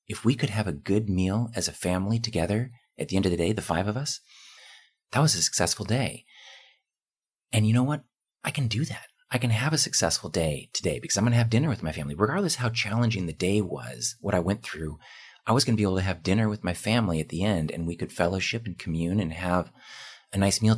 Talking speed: 250 wpm